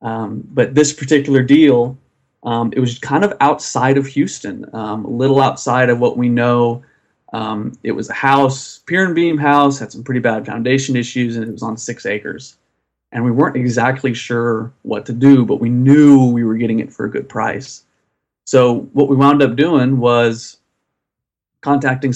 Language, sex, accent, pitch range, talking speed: English, male, American, 115-135 Hz, 185 wpm